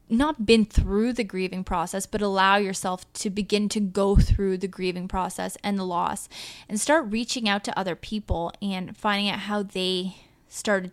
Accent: American